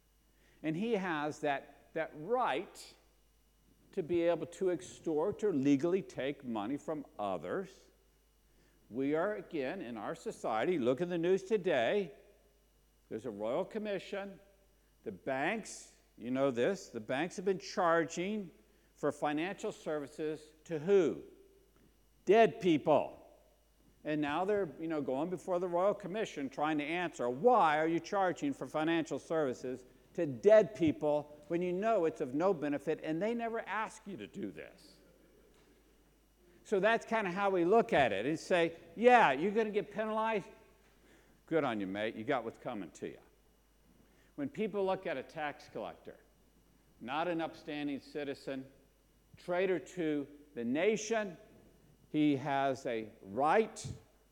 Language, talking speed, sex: English, 145 wpm, male